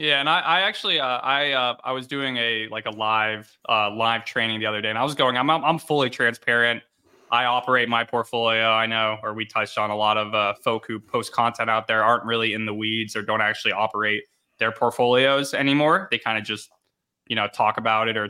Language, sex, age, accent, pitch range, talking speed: English, male, 20-39, American, 115-135 Hz, 235 wpm